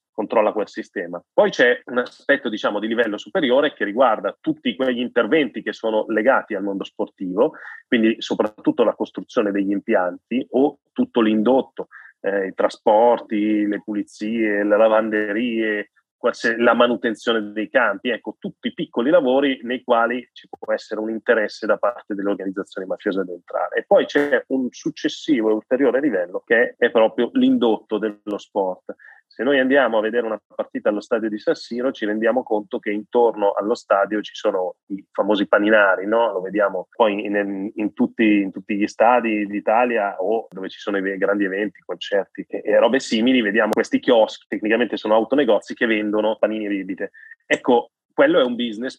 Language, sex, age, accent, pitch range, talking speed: Italian, male, 30-49, native, 105-125 Hz, 170 wpm